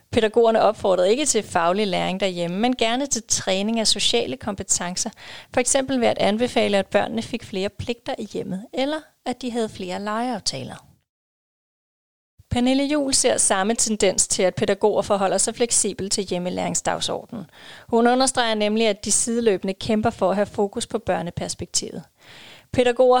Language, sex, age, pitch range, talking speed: Danish, female, 30-49, 195-235 Hz, 150 wpm